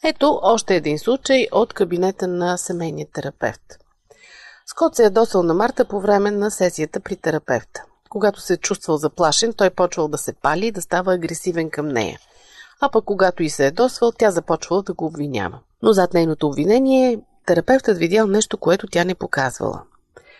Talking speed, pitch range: 175 wpm, 165-220 Hz